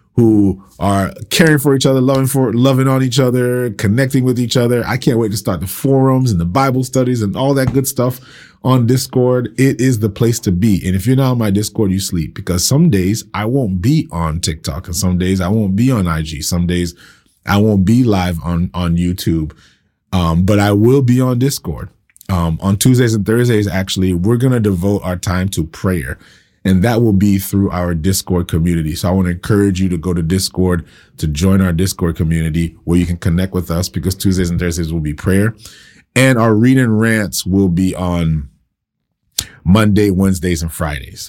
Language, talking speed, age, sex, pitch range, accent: English, 205 wpm, 30-49, male, 90-115 Hz, American